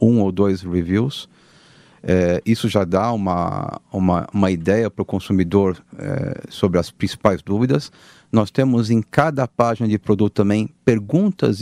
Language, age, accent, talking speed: Portuguese, 40-59, Brazilian, 150 wpm